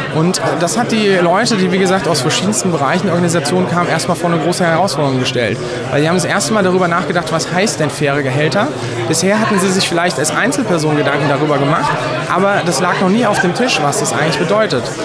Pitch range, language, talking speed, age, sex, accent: 145-175 Hz, German, 220 wpm, 30-49, male, German